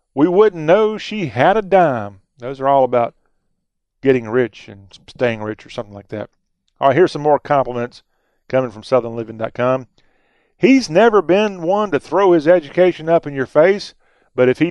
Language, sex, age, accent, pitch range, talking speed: English, male, 40-59, American, 120-165 Hz, 180 wpm